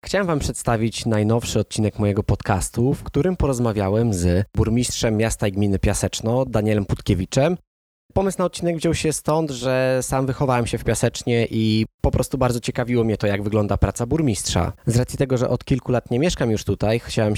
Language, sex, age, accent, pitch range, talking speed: Polish, male, 20-39, native, 100-125 Hz, 185 wpm